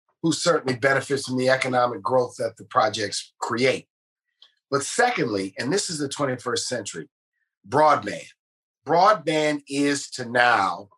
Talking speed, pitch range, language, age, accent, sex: 130 wpm, 125-150 Hz, English, 50-69, American, male